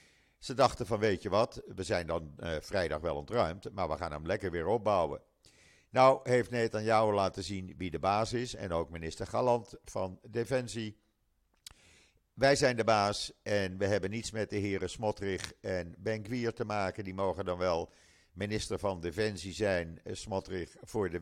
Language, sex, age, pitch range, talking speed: Dutch, male, 50-69, 95-110 Hz, 180 wpm